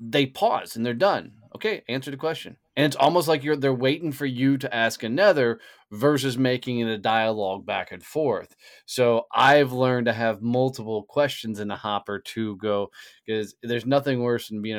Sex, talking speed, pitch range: male, 190 wpm, 105-140 Hz